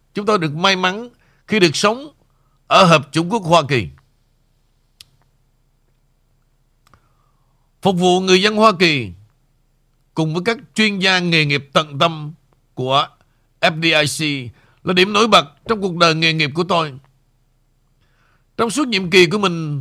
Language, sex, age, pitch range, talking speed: Vietnamese, male, 60-79, 135-190 Hz, 145 wpm